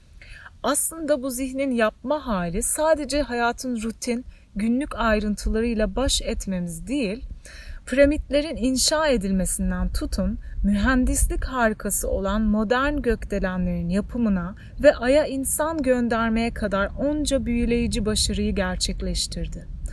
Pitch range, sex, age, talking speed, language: 195-265 Hz, female, 30-49, 95 wpm, Turkish